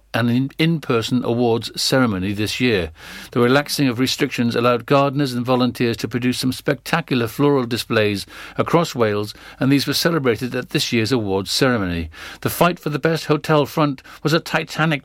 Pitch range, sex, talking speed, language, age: 120-150 Hz, male, 165 wpm, English, 50-69